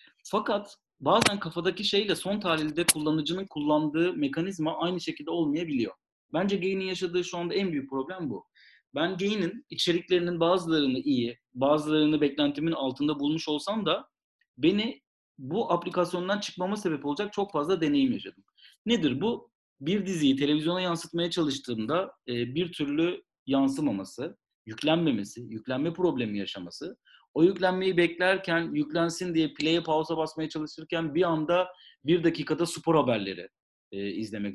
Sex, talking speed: male, 125 wpm